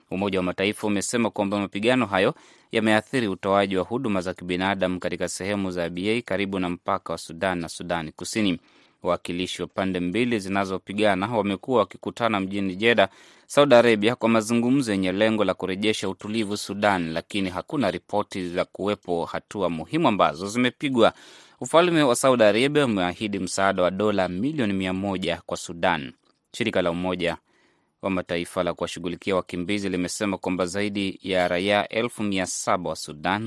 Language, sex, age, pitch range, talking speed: Swahili, male, 20-39, 90-110 Hz, 145 wpm